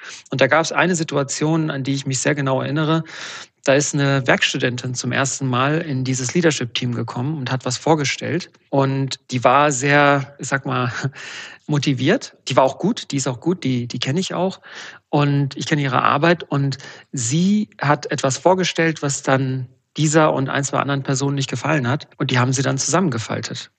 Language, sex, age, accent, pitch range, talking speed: German, male, 40-59, German, 130-155 Hz, 190 wpm